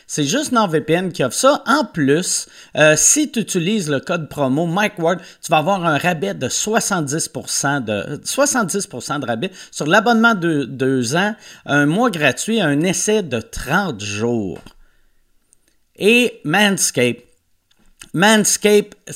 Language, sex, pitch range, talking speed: French, male, 145-210 Hz, 140 wpm